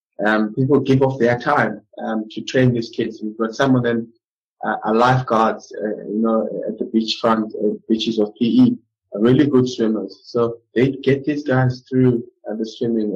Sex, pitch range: male, 115-140 Hz